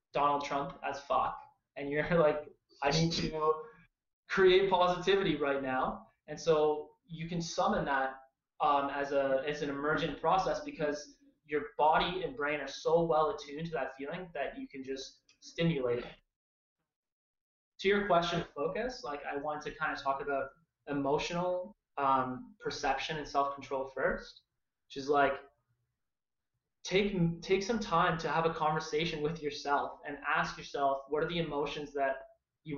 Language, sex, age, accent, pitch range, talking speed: English, male, 20-39, American, 140-170 Hz, 160 wpm